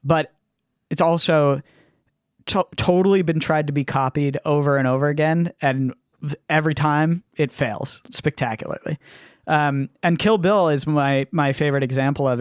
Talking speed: 150 wpm